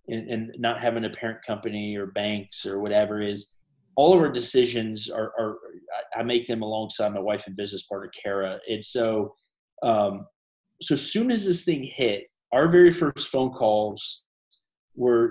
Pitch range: 115-145 Hz